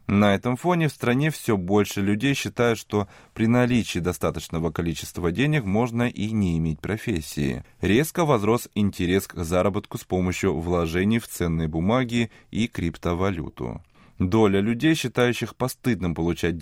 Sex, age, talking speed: male, 20-39, 135 wpm